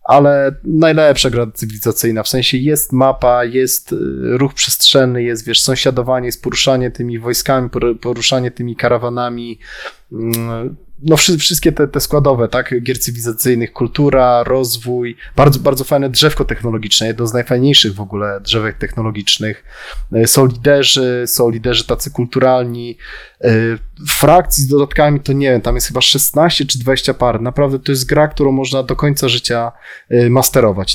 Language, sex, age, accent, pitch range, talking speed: Polish, male, 20-39, native, 120-140 Hz, 135 wpm